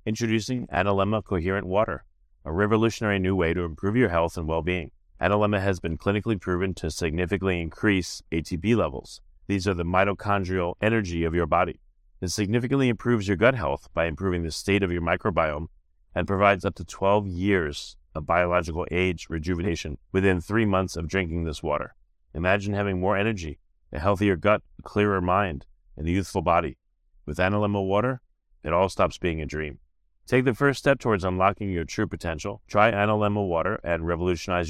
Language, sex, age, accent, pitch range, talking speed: English, male, 30-49, American, 85-105 Hz, 170 wpm